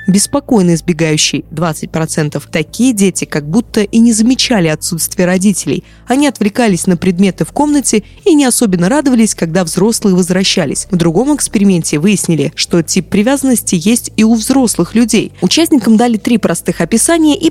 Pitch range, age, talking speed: 175-240 Hz, 20-39, 145 wpm